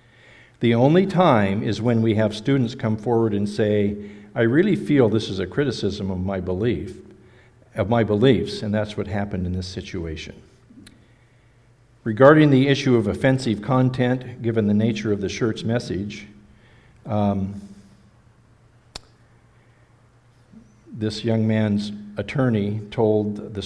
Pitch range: 105-120 Hz